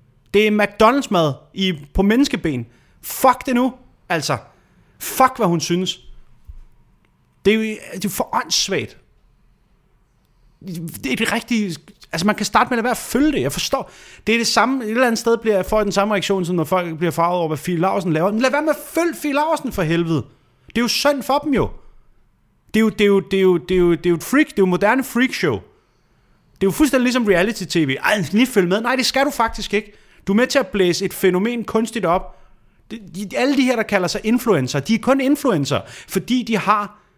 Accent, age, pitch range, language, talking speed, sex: native, 30-49, 180-245 Hz, Danish, 210 wpm, male